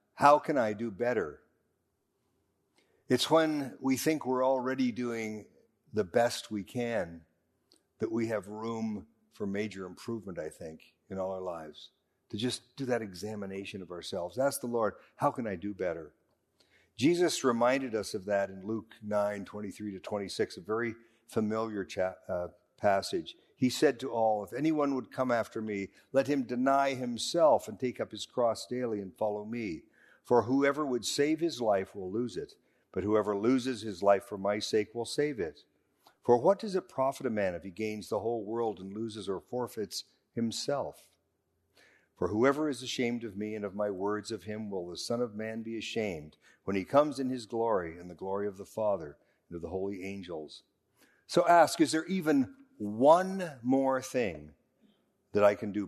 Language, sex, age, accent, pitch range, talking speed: English, male, 50-69, American, 100-130 Hz, 185 wpm